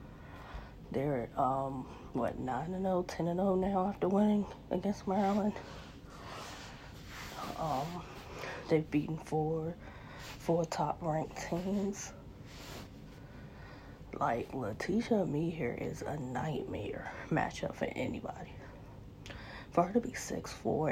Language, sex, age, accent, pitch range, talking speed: English, female, 30-49, American, 140-170 Hz, 105 wpm